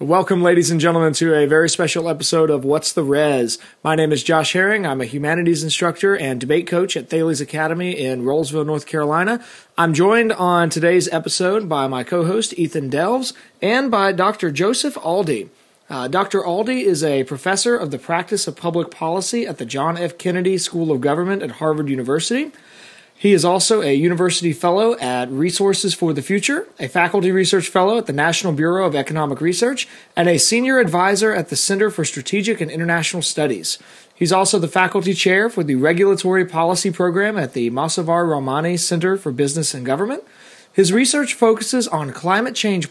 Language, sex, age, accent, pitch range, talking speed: English, male, 30-49, American, 155-195 Hz, 180 wpm